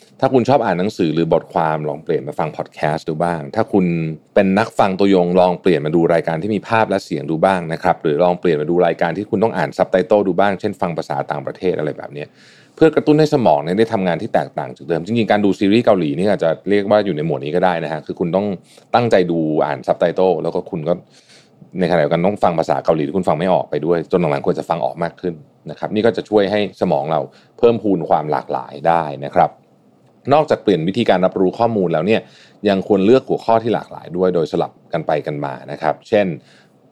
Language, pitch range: Thai, 80-105 Hz